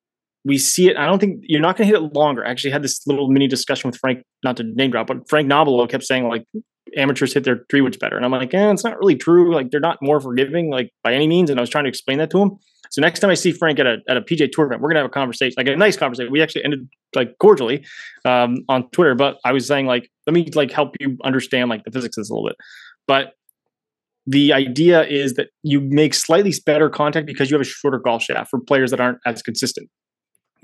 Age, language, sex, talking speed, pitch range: 20-39, English, male, 270 wpm, 125-160 Hz